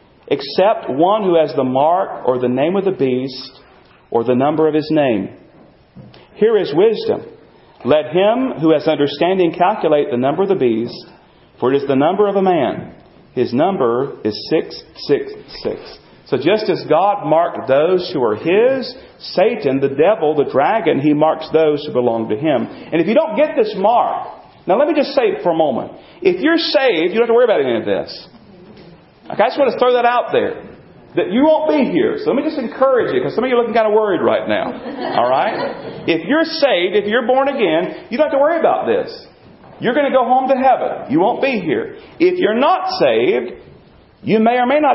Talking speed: 215 wpm